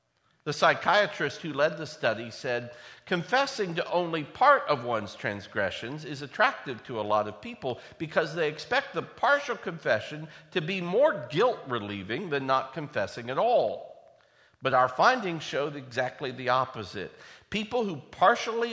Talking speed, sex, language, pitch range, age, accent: 145 wpm, male, English, 140-205 Hz, 50-69, American